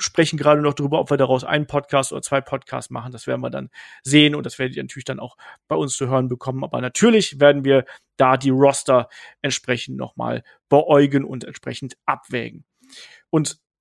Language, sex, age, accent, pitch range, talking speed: German, male, 40-59, German, 135-180 Hz, 190 wpm